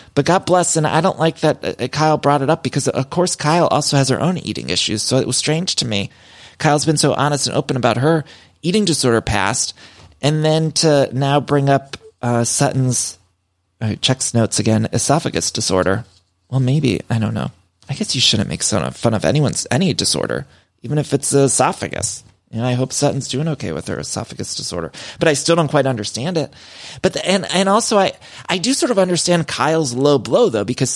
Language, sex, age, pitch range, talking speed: English, male, 30-49, 120-155 Hz, 205 wpm